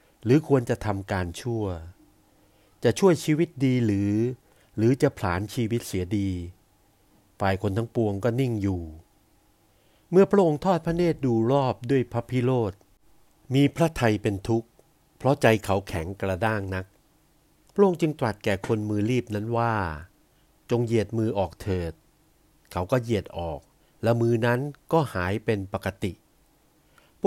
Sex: male